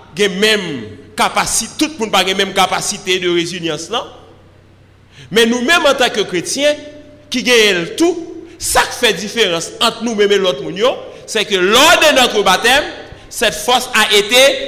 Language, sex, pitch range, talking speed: French, male, 190-280 Hz, 160 wpm